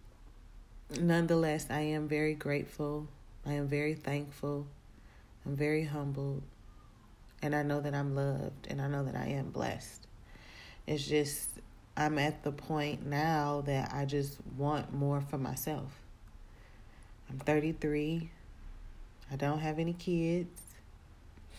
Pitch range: 110-155 Hz